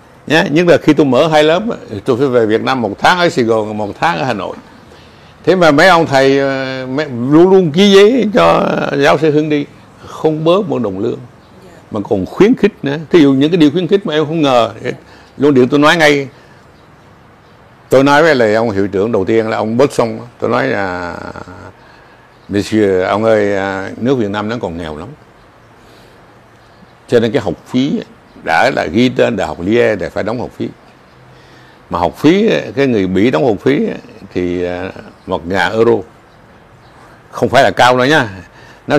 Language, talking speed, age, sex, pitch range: Vietnamese, 200 wpm, 60-79, male, 105-150 Hz